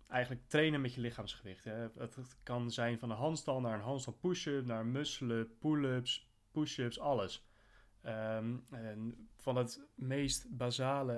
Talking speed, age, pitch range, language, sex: 145 wpm, 20-39, 110-135 Hz, Dutch, male